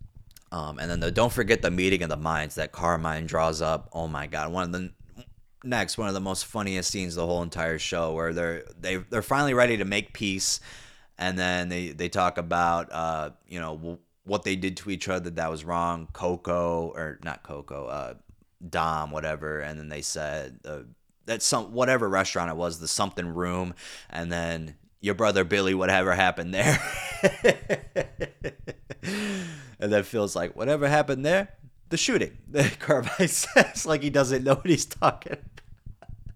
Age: 20-39